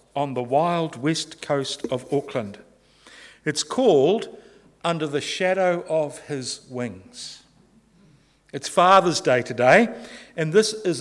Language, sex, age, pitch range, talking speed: English, male, 50-69, 130-170 Hz, 120 wpm